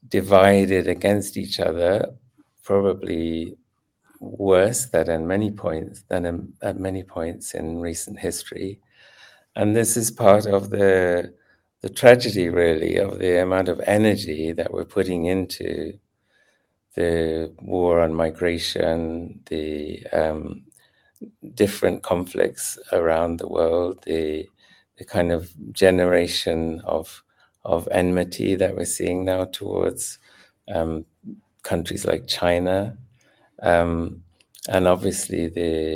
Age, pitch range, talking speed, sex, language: 60-79, 85-95 Hz, 115 wpm, male, English